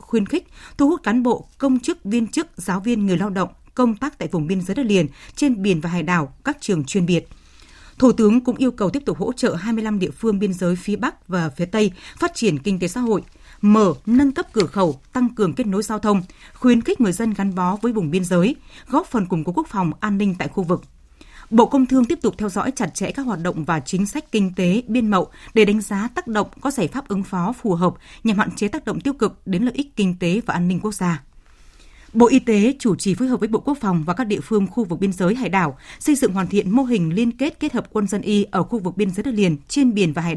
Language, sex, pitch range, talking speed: Vietnamese, female, 185-245 Hz, 270 wpm